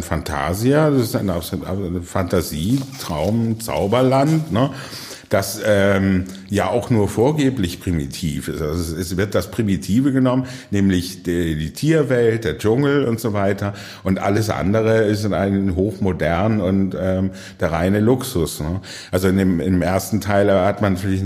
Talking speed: 145 wpm